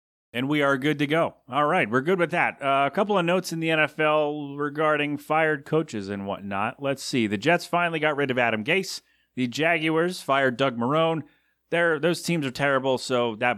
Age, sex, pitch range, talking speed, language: 30-49, male, 120-160 Hz, 210 wpm, English